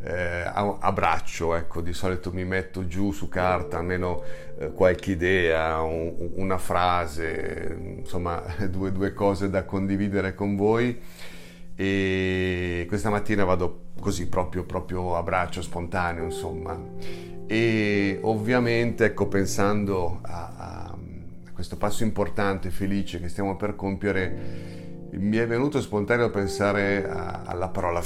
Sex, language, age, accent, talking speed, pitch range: male, Italian, 40-59, native, 125 wpm, 85-100 Hz